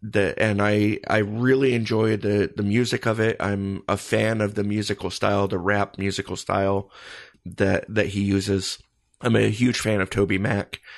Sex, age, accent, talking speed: male, 30-49, American, 180 wpm